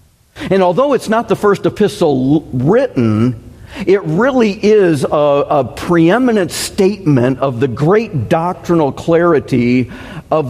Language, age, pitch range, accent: English, 50-69, 125-170 Hz, American